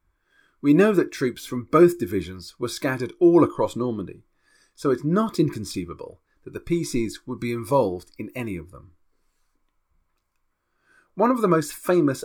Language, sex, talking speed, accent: English, male, 150 wpm, British